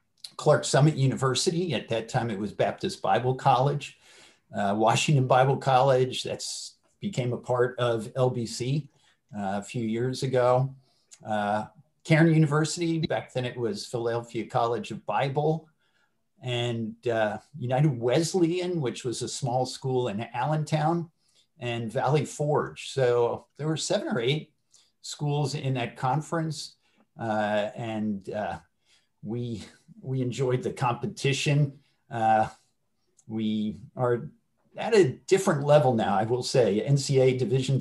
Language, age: English, 50-69